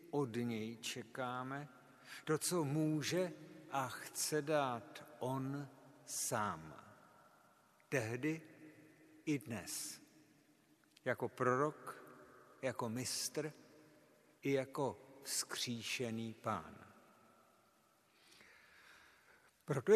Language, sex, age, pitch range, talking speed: Czech, male, 60-79, 120-155 Hz, 70 wpm